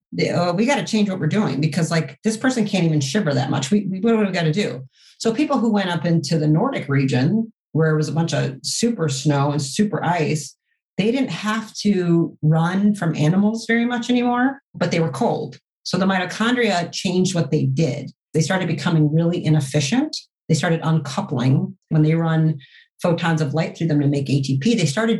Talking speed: 210 wpm